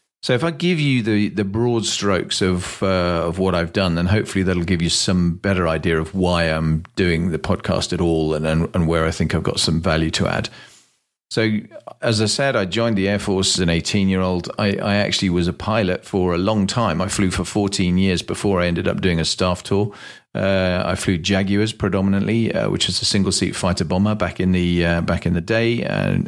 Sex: male